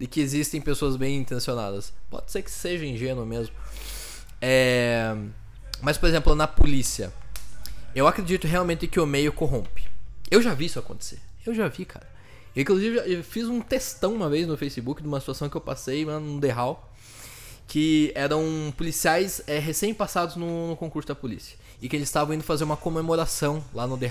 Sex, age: male, 20-39